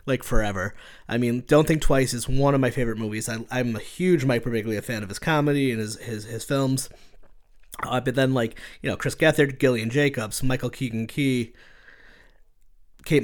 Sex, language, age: male, English, 30-49